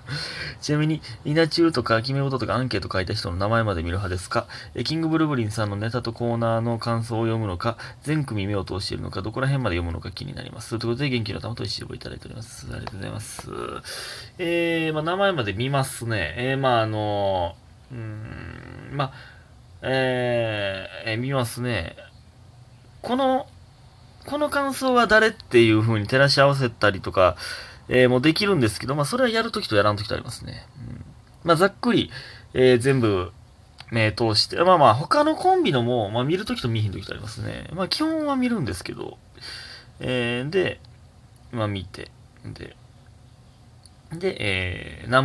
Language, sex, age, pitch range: Japanese, male, 20-39, 110-135 Hz